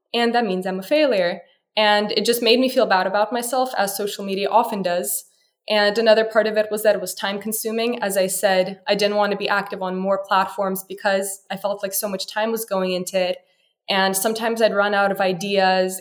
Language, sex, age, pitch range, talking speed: English, female, 20-39, 195-220 Hz, 230 wpm